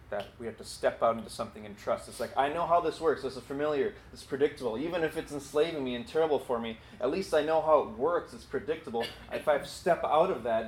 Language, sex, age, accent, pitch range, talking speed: English, male, 30-49, American, 115-160 Hz, 260 wpm